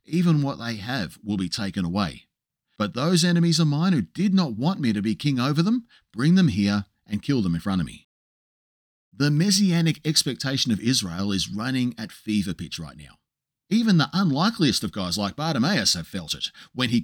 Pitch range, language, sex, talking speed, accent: 120-175 Hz, English, male, 200 wpm, Australian